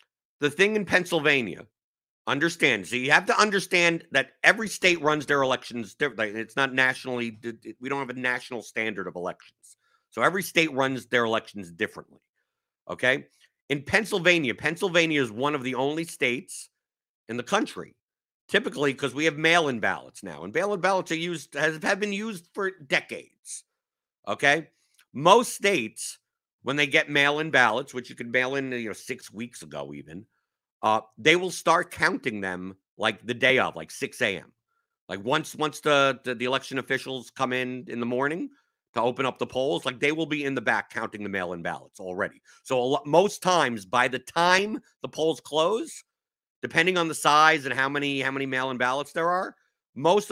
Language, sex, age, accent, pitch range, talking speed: English, male, 50-69, American, 120-165 Hz, 180 wpm